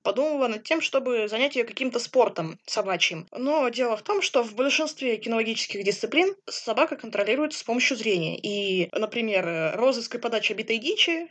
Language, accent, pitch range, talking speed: Russian, native, 195-260 Hz, 160 wpm